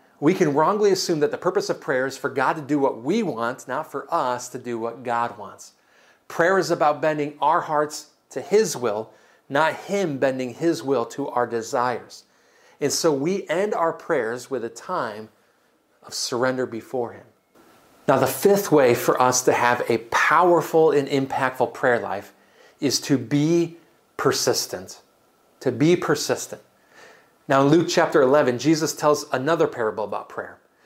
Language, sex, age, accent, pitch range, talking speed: English, male, 40-59, American, 130-185 Hz, 170 wpm